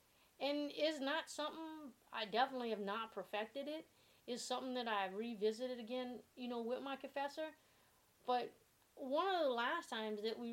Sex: female